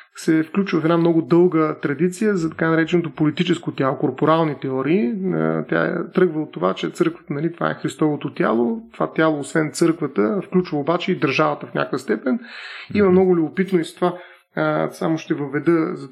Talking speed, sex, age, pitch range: 170 wpm, male, 30-49, 150-180 Hz